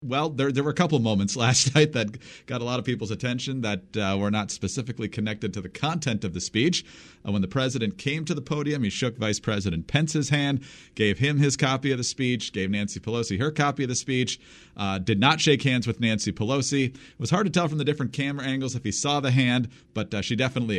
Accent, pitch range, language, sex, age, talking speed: American, 105-140 Hz, English, male, 40-59, 240 wpm